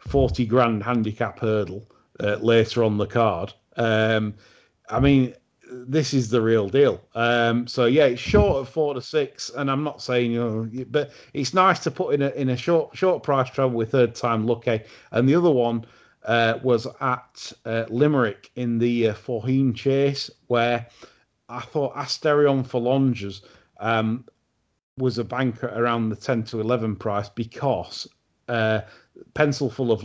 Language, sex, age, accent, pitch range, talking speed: English, male, 40-59, British, 110-130 Hz, 170 wpm